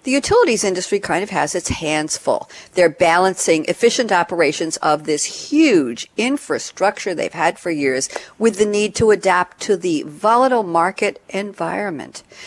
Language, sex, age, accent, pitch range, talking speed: English, female, 50-69, American, 150-200 Hz, 150 wpm